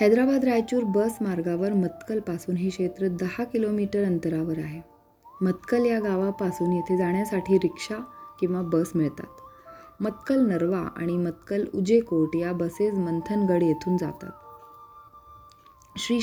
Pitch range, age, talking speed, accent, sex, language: 175-225 Hz, 20-39, 120 wpm, native, female, Marathi